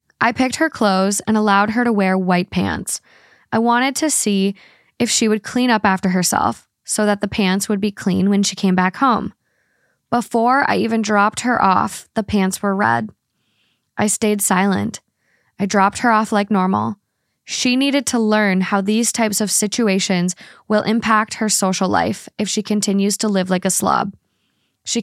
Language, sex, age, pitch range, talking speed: English, female, 20-39, 190-225 Hz, 180 wpm